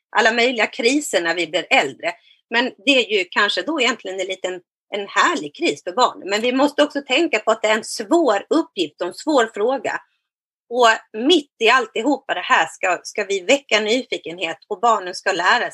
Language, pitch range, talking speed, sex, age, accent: Swedish, 190-275 Hz, 195 wpm, female, 30-49, native